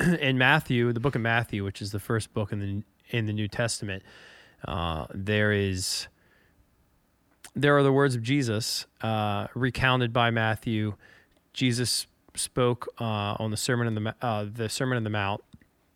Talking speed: 165 wpm